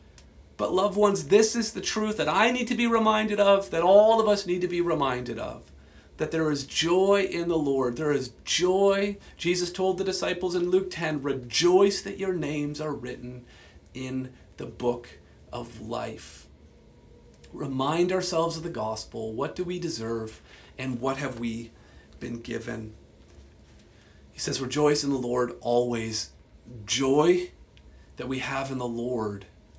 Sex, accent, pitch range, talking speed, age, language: male, American, 115-150 Hz, 160 wpm, 40-59, English